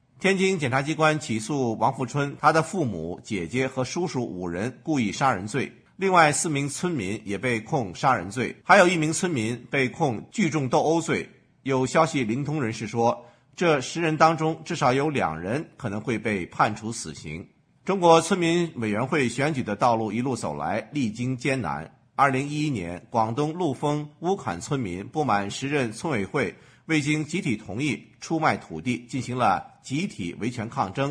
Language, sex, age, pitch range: English, male, 50-69, 120-160 Hz